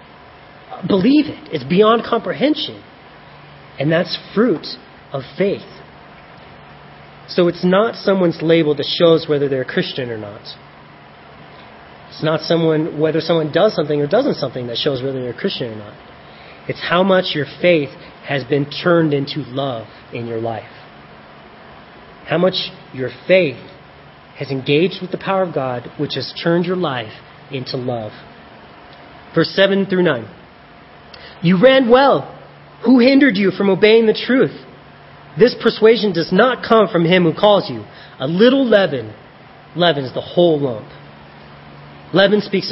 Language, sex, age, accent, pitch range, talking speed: English, male, 30-49, American, 140-195 Hz, 150 wpm